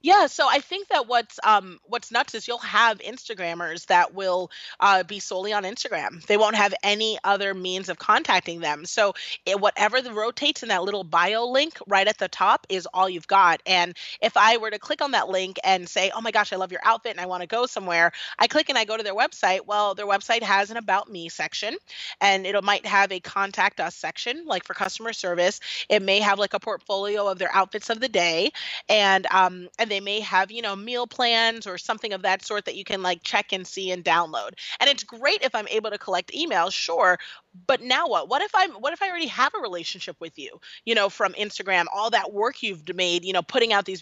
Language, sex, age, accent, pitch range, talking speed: English, female, 30-49, American, 185-230 Hz, 235 wpm